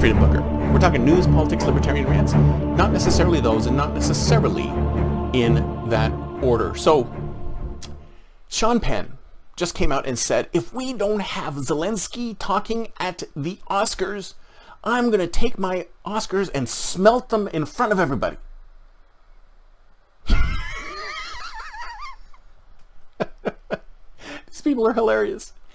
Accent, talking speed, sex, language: American, 120 wpm, male, English